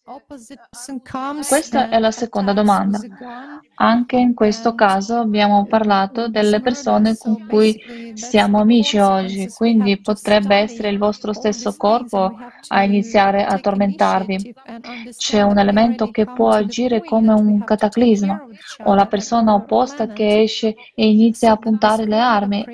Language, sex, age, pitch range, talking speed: Italian, female, 20-39, 215-245 Hz, 130 wpm